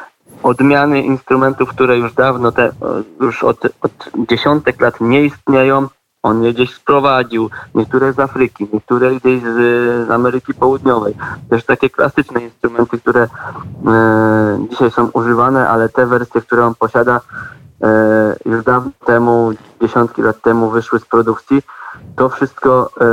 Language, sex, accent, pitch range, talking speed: Polish, male, native, 115-130 Hz, 135 wpm